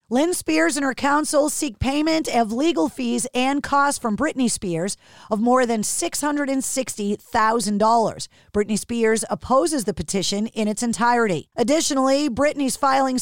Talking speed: 135 wpm